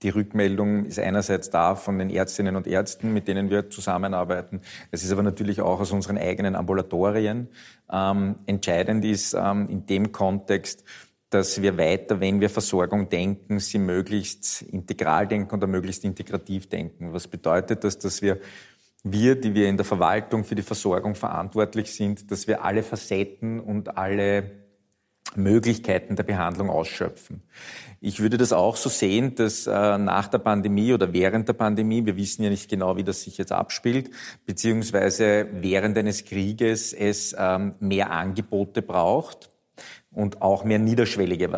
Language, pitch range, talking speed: German, 95-110 Hz, 155 wpm